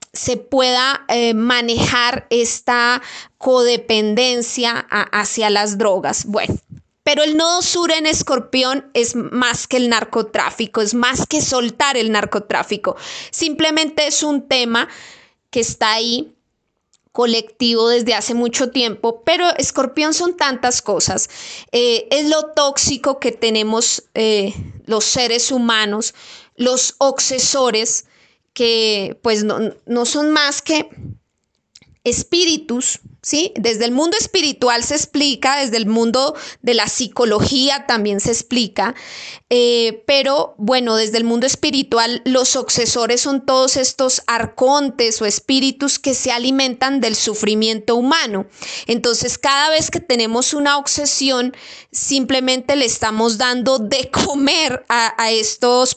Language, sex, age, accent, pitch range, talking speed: Spanish, female, 20-39, Colombian, 230-280 Hz, 125 wpm